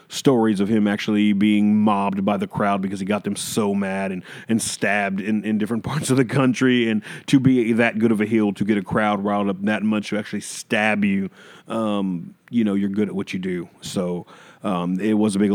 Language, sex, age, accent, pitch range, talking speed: English, male, 30-49, American, 100-120 Hz, 230 wpm